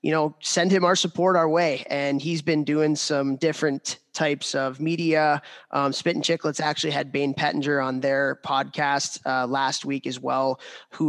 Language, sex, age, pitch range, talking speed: English, male, 20-39, 130-150 Hz, 185 wpm